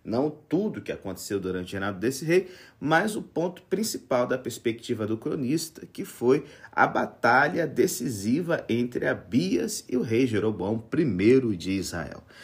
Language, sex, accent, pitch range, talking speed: Portuguese, male, Brazilian, 110-155 Hz, 155 wpm